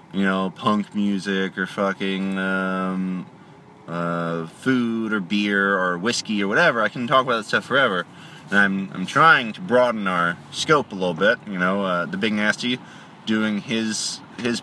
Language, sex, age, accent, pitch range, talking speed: English, male, 20-39, American, 100-130 Hz, 170 wpm